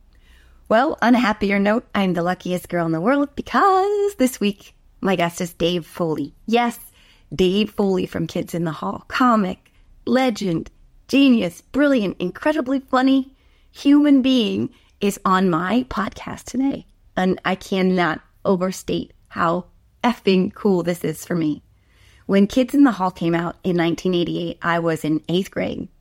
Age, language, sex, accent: 30-49, English, female, American